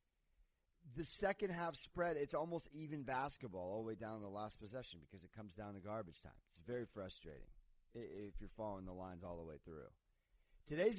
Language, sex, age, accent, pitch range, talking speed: English, male, 30-49, American, 115-180 Hz, 195 wpm